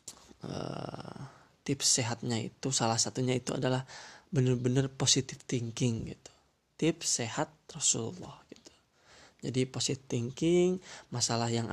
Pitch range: 115-140 Hz